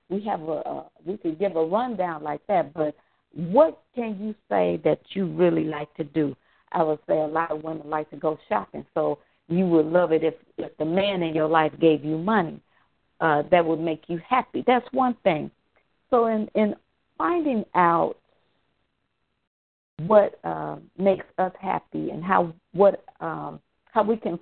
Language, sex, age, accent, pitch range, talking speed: English, female, 50-69, American, 155-200 Hz, 180 wpm